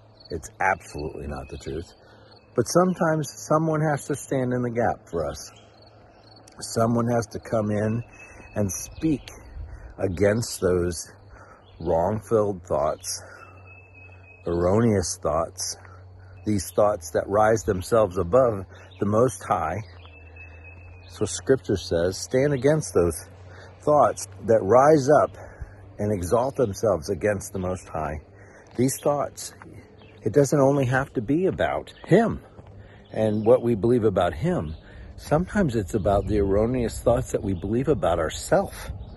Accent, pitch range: American, 95-120 Hz